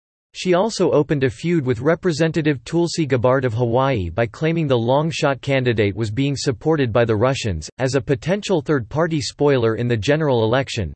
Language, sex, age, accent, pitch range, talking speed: English, male, 40-59, American, 120-150 Hz, 170 wpm